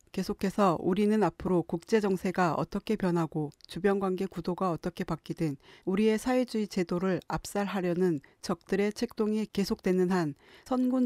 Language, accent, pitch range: Korean, native, 175-210 Hz